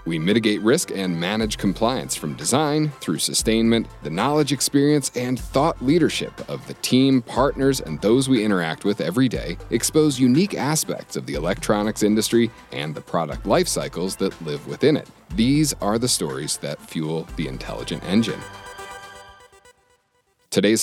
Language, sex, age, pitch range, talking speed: English, male, 40-59, 90-125 Hz, 155 wpm